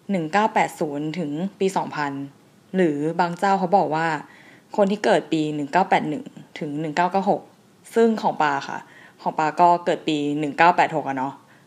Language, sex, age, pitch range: Thai, female, 20-39, 160-205 Hz